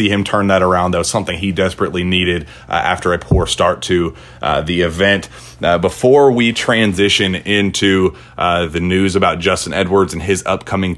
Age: 30-49